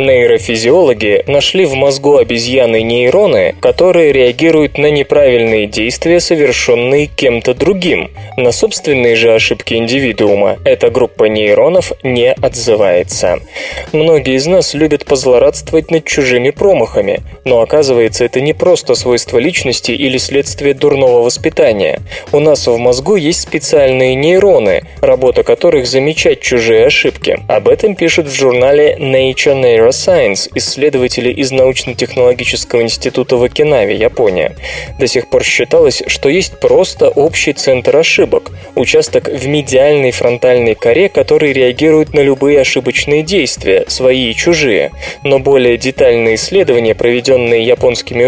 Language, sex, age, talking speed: Russian, male, 20-39, 125 wpm